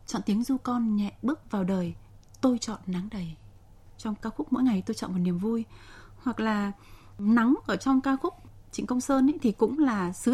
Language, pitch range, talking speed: Vietnamese, 190-260 Hz, 210 wpm